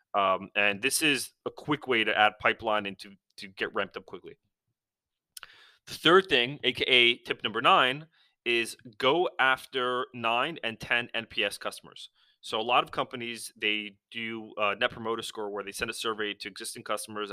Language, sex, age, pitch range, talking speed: English, male, 30-49, 105-120 Hz, 175 wpm